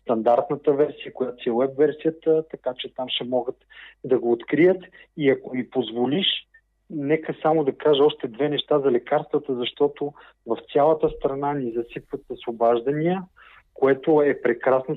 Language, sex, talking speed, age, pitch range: Bulgarian, male, 150 wpm, 40-59, 130-155 Hz